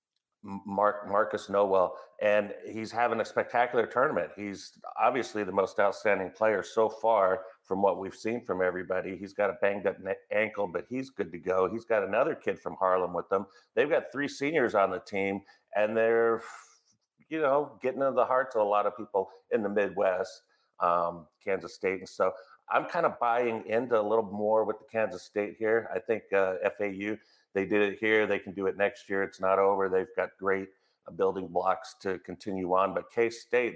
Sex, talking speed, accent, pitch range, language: male, 195 wpm, American, 95-115 Hz, English